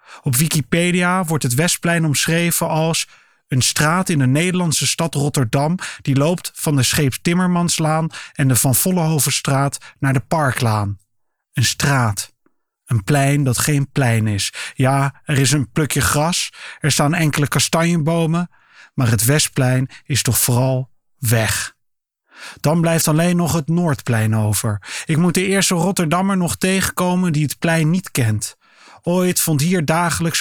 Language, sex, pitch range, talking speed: Dutch, male, 130-165 Hz, 145 wpm